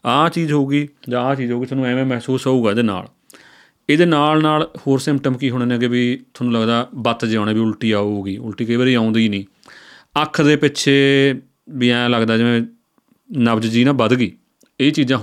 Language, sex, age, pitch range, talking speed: Punjabi, male, 30-49, 115-150 Hz, 180 wpm